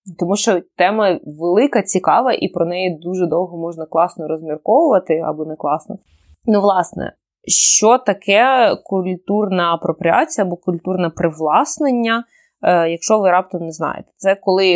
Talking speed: 130 wpm